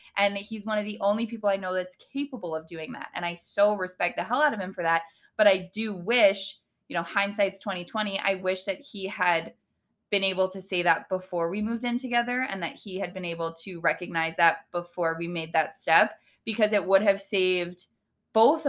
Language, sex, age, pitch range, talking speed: English, female, 20-39, 170-210 Hz, 220 wpm